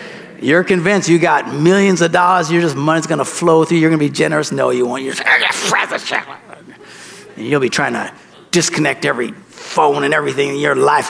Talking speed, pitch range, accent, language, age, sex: 185 wpm, 165-265 Hz, American, English, 50-69, male